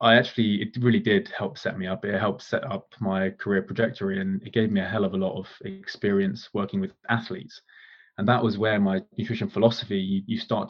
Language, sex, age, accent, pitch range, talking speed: English, male, 20-39, British, 95-130 Hz, 220 wpm